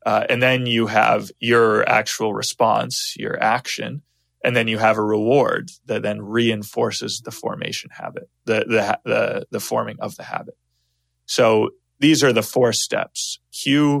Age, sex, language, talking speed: 20-39, male, English, 160 wpm